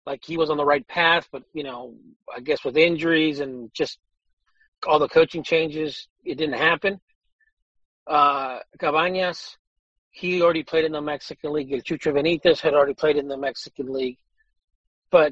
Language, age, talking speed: English, 40-59, 165 wpm